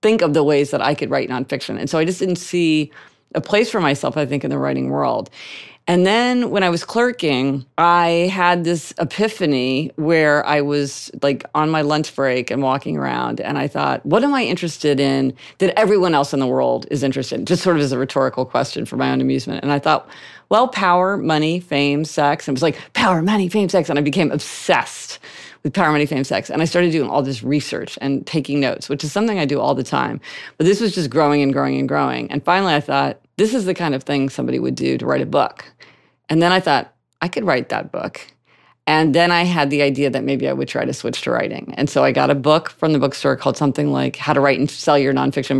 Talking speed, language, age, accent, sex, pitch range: 245 wpm, English, 40-59, American, female, 135-175 Hz